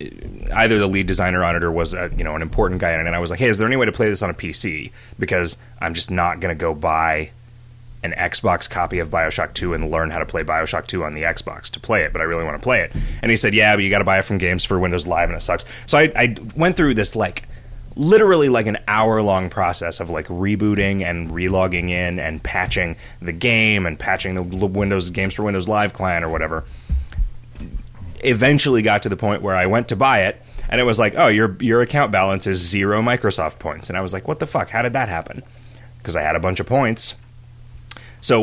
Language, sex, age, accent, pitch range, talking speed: English, male, 30-49, American, 90-120 Hz, 245 wpm